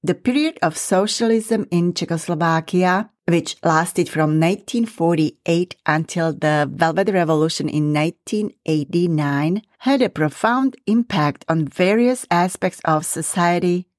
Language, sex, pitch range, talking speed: English, female, 160-210 Hz, 105 wpm